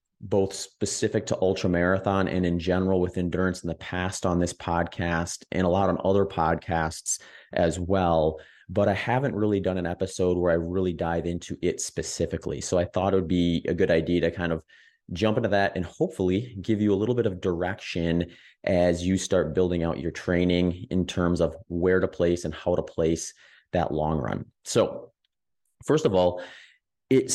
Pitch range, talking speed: 85-100 Hz, 190 wpm